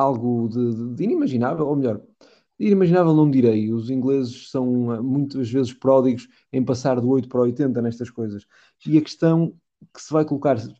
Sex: male